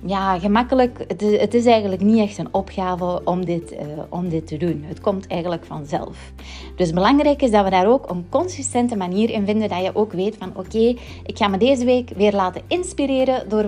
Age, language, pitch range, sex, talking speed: 30-49, Dutch, 180-230 Hz, female, 205 wpm